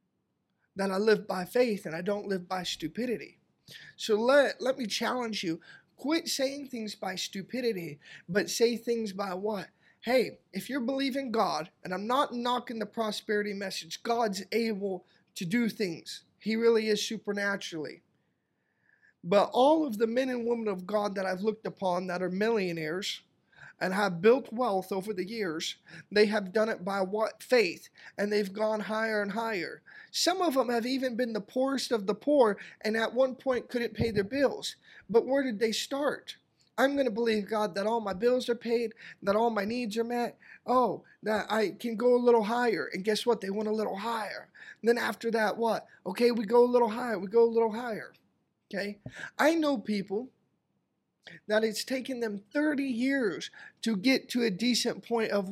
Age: 20-39